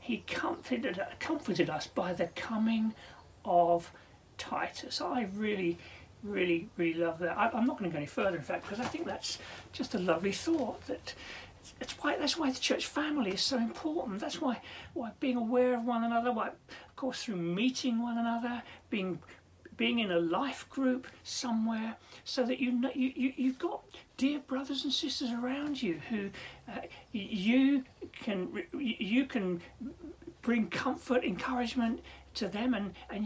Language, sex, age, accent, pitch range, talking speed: English, male, 40-59, British, 205-275 Hz, 170 wpm